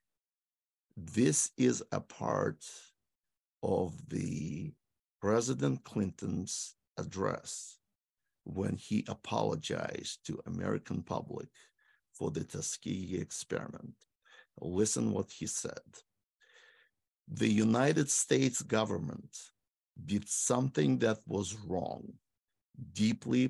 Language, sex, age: English, male, 50-69